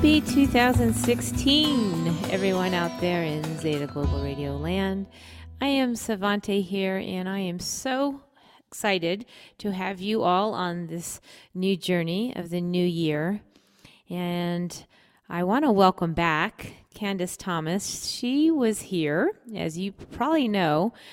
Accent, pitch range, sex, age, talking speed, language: American, 165-205 Hz, female, 30-49, 130 wpm, English